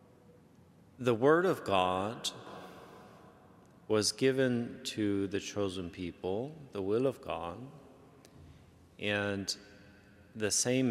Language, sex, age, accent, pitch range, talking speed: English, male, 30-49, American, 90-110 Hz, 95 wpm